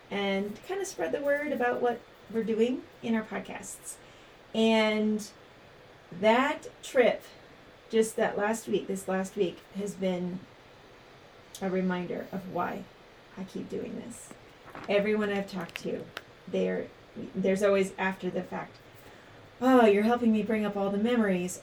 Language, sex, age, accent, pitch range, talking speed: English, female, 30-49, American, 190-220 Hz, 145 wpm